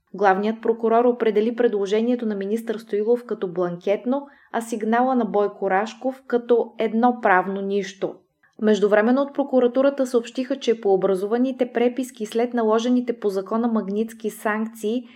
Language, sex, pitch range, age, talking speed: Bulgarian, female, 195-240 Hz, 20-39, 125 wpm